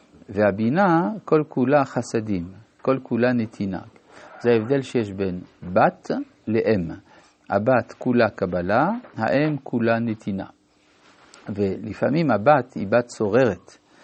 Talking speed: 95 wpm